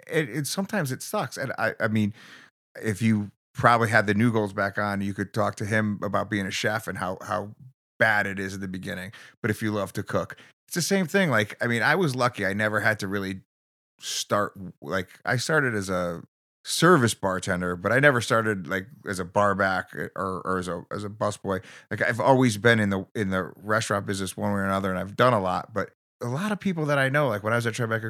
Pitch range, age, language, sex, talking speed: 100-125 Hz, 30-49, English, male, 245 wpm